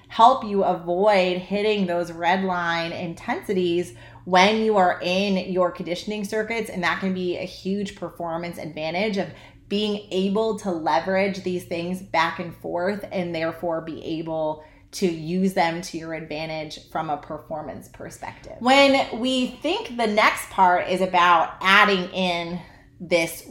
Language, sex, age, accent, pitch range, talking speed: English, female, 30-49, American, 175-210 Hz, 150 wpm